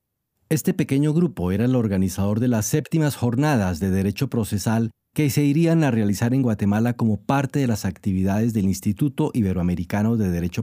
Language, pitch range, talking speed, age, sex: Spanish, 100-135 Hz, 170 wpm, 40-59, male